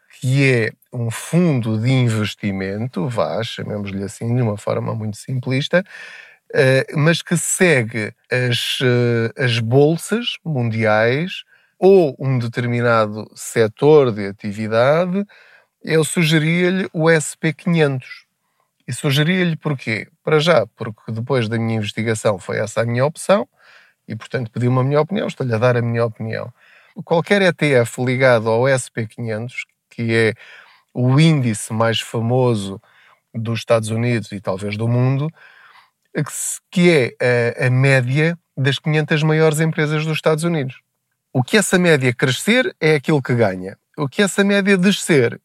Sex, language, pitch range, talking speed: male, Portuguese, 115-160 Hz, 135 wpm